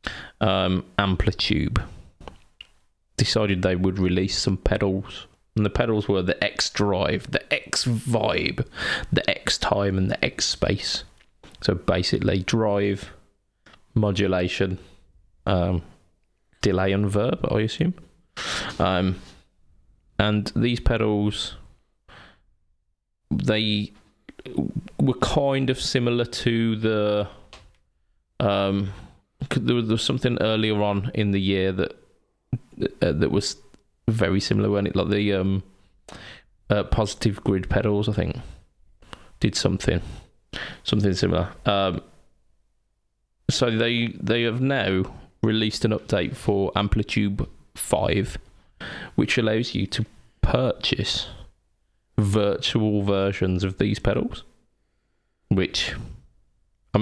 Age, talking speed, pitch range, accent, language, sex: 20-39, 105 wpm, 95-110 Hz, British, English, male